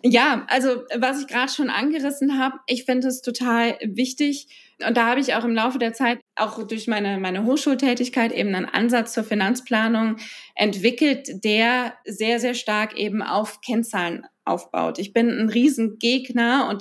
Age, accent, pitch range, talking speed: 20-39, German, 220-265 Hz, 165 wpm